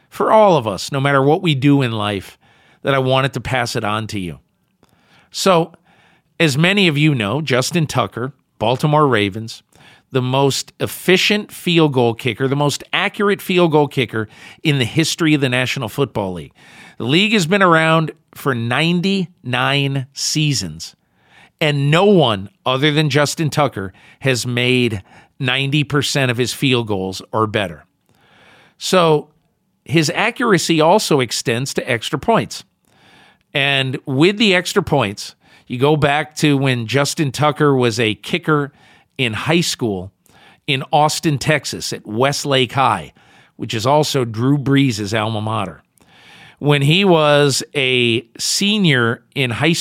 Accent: American